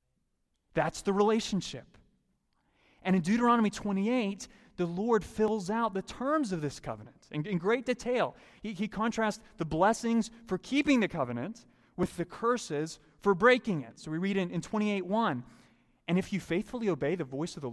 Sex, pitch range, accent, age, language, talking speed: male, 145-215 Hz, American, 30-49, English, 170 wpm